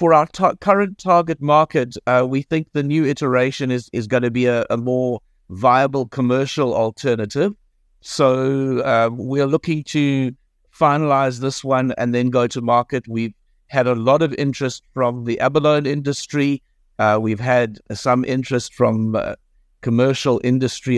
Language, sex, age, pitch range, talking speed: English, male, 60-79, 110-140 Hz, 155 wpm